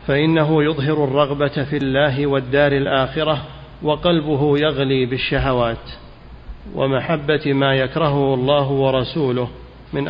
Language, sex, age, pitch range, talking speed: Arabic, male, 50-69, 130-150 Hz, 95 wpm